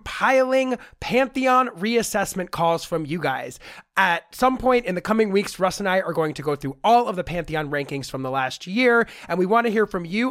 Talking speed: 220 wpm